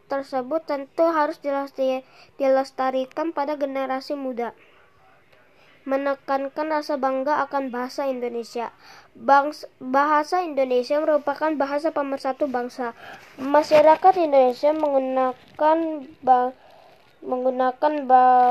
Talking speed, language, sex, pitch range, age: 80 wpm, Indonesian, female, 265-305 Hz, 20-39